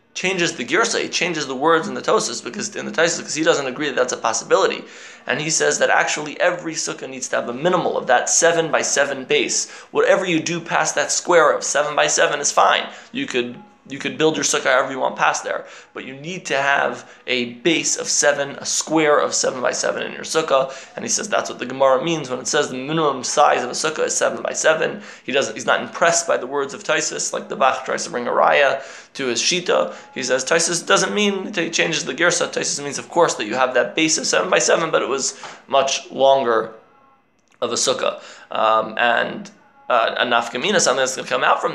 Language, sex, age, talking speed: English, male, 20-39, 240 wpm